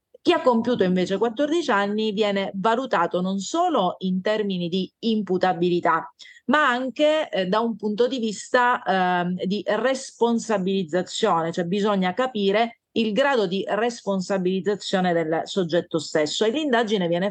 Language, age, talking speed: Italian, 30-49, 130 wpm